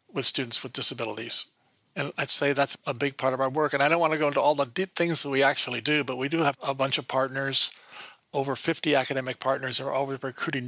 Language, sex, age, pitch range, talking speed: English, male, 50-69, 135-155 Hz, 245 wpm